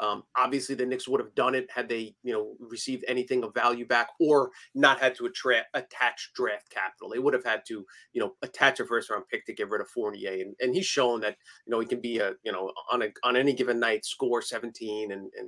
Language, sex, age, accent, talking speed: English, male, 30-49, American, 250 wpm